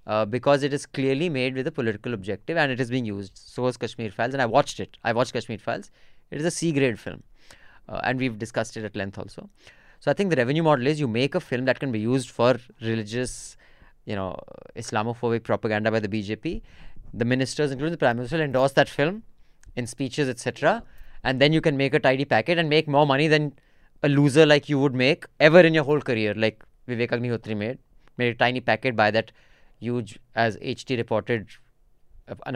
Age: 20-39